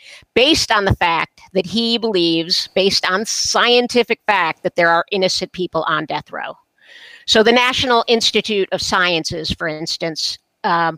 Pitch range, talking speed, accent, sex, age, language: 175-225 Hz, 155 wpm, American, female, 50-69, English